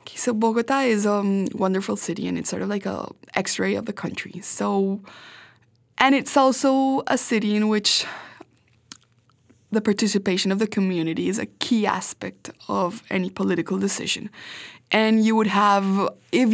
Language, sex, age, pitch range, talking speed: English, female, 20-39, 190-220 Hz, 155 wpm